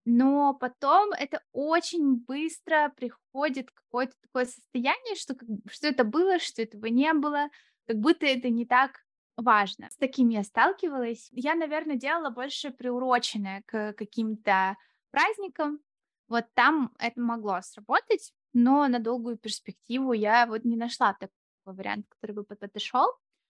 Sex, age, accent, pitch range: female, 20-39, native, 225-275 Hz